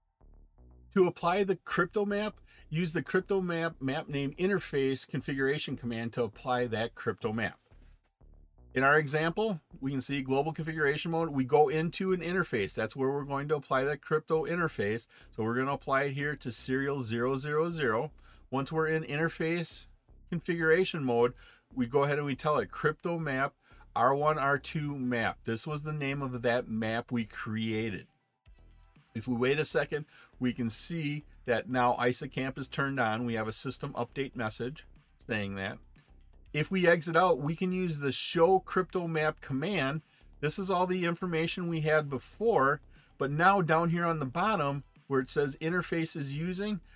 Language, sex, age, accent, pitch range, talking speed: English, male, 40-59, American, 125-165 Hz, 170 wpm